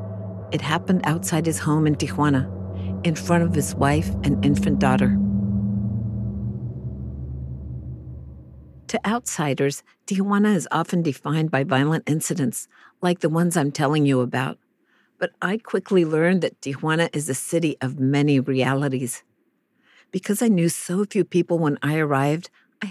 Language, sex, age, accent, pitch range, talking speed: English, female, 50-69, American, 135-170 Hz, 140 wpm